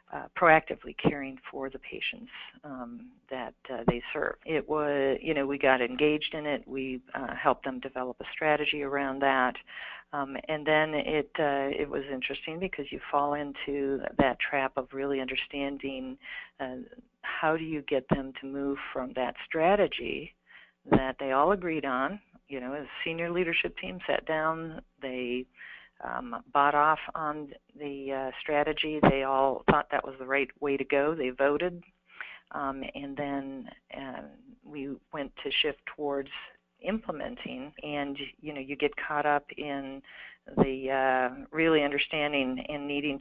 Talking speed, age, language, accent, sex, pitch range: 160 wpm, 50-69, English, American, female, 135-155 Hz